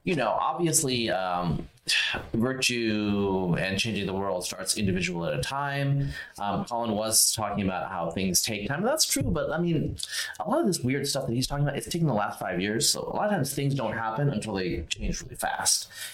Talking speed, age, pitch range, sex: 210 wpm, 30-49, 95-140 Hz, male